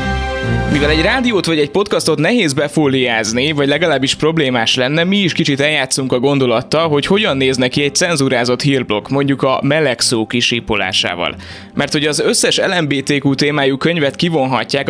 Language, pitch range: Hungarian, 125-150 Hz